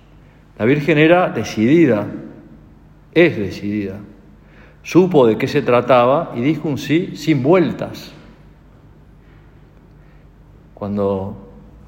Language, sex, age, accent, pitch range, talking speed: Spanish, male, 50-69, Argentinian, 100-135 Hz, 90 wpm